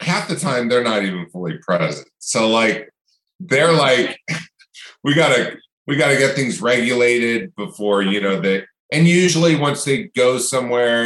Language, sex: English, male